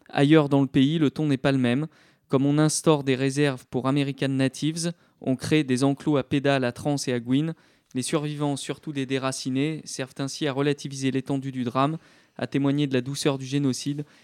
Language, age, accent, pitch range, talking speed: French, 20-39, French, 130-150 Hz, 200 wpm